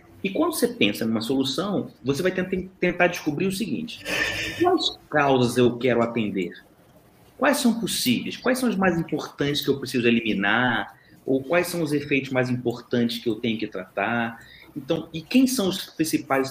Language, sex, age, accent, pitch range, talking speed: Portuguese, male, 30-49, Brazilian, 130-210 Hz, 170 wpm